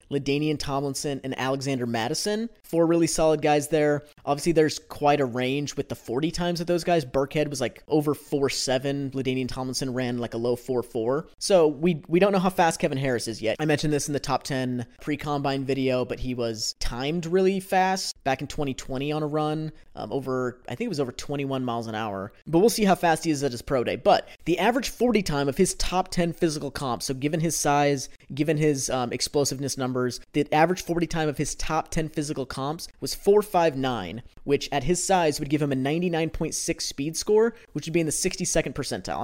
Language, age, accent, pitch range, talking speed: English, 20-39, American, 130-160 Hz, 215 wpm